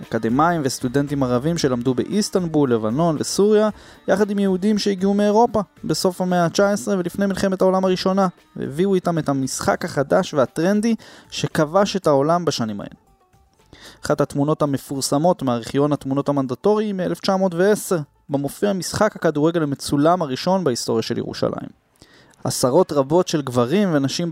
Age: 20-39